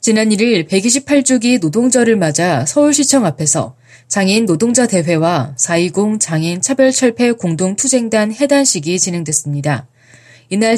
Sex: female